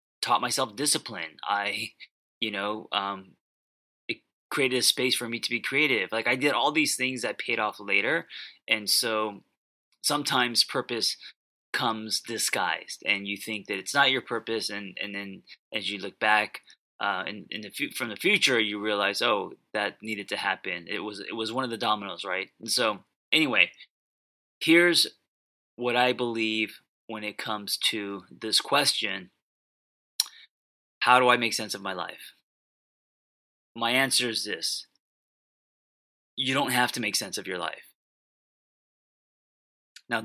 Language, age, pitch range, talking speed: English, 20-39, 105-125 Hz, 160 wpm